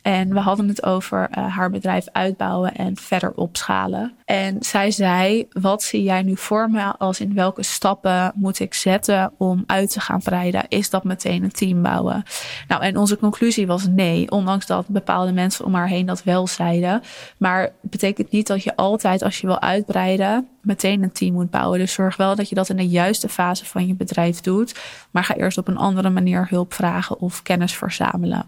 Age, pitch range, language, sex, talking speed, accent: 20-39, 185-210 Hz, Dutch, female, 205 wpm, Dutch